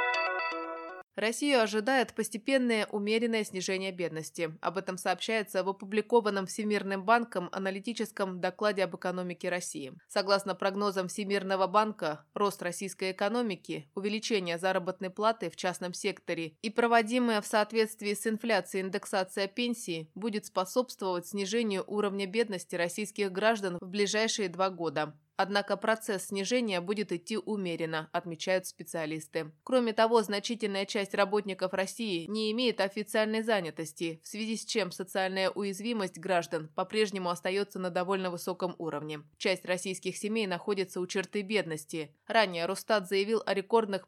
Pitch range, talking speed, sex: 185-215 Hz, 125 wpm, female